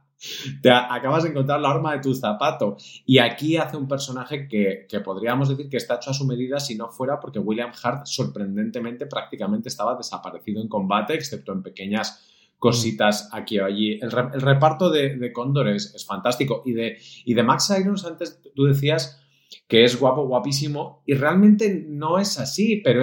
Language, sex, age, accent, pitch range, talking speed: Spanish, male, 30-49, Spanish, 120-150 Hz, 180 wpm